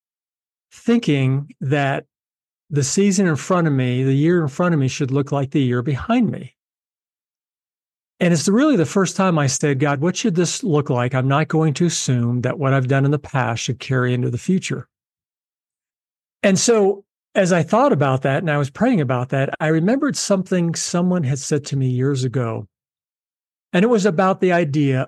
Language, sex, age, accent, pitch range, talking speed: English, male, 50-69, American, 135-185 Hz, 195 wpm